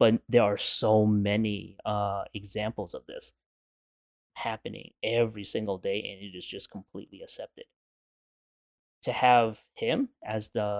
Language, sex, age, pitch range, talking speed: English, male, 20-39, 105-125 Hz, 135 wpm